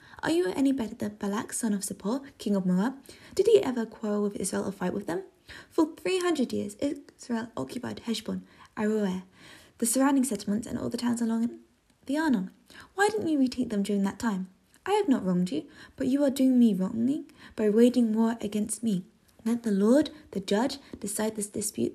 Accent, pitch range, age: British, 195-240 Hz, 10-29